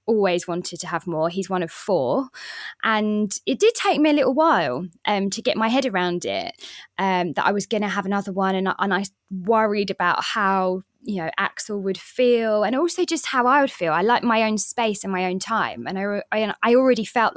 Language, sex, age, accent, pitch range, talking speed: English, female, 20-39, British, 185-240 Hz, 225 wpm